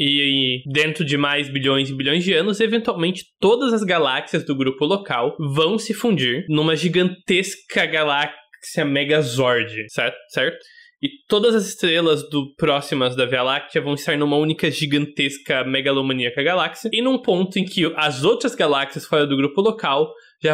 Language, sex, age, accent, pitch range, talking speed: Portuguese, male, 20-39, Brazilian, 135-180 Hz, 160 wpm